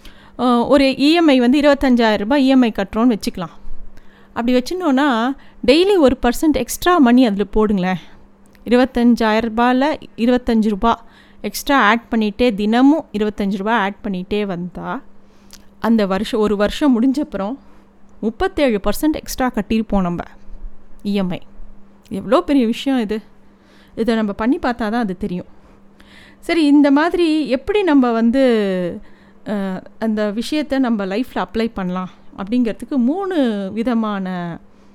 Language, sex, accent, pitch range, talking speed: Tamil, female, native, 205-270 Hz, 115 wpm